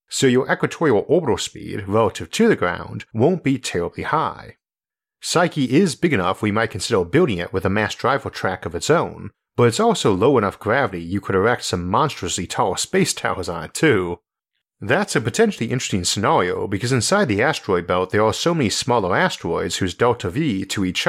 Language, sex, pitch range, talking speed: English, male, 95-130 Hz, 195 wpm